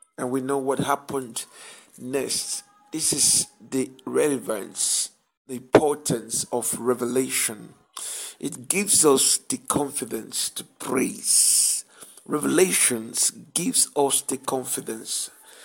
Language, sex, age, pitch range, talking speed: English, male, 60-79, 140-210 Hz, 100 wpm